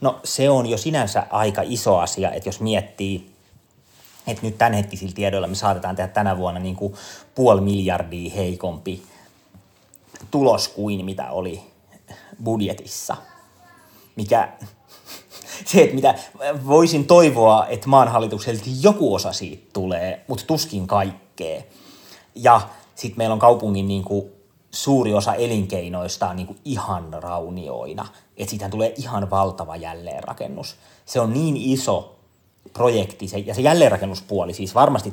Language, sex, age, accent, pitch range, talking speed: Finnish, male, 30-49, native, 95-120 Hz, 135 wpm